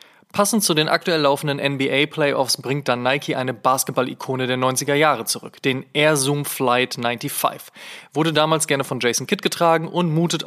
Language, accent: German, German